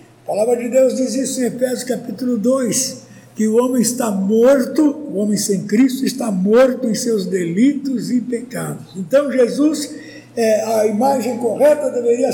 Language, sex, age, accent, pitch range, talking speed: Portuguese, male, 60-79, Brazilian, 215-265 Hz, 160 wpm